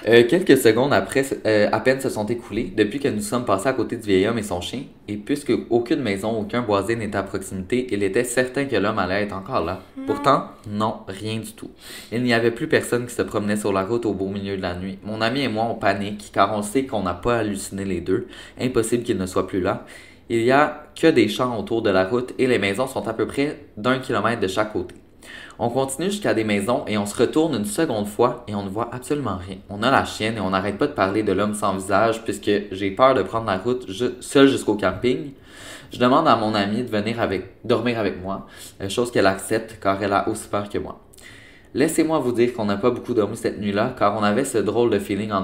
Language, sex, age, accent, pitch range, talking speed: French, male, 20-39, Canadian, 100-120 Hz, 245 wpm